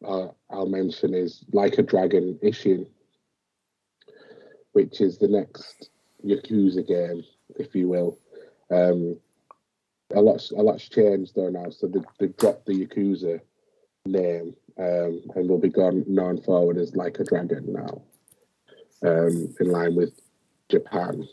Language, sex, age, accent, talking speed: English, male, 30-49, British, 130 wpm